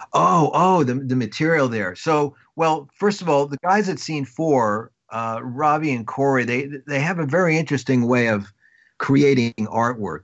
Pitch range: 105-130 Hz